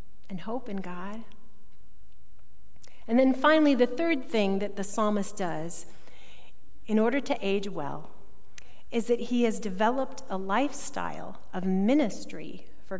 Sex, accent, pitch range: female, American, 205-275 Hz